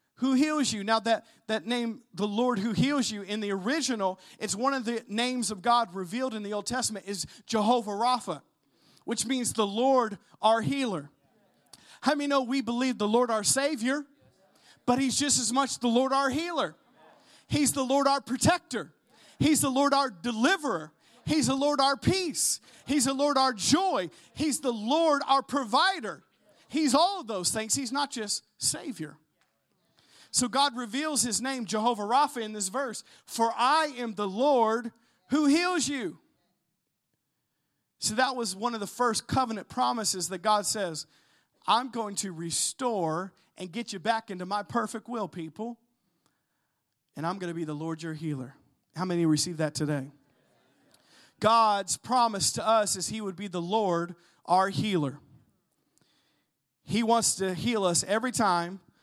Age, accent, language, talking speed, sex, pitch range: 40-59, American, English, 165 wpm, male, 195-265 Hz